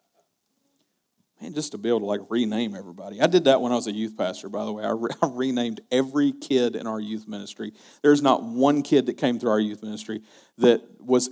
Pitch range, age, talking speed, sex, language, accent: 125-190 Hz, 40-59, 215 wpm, male, English, American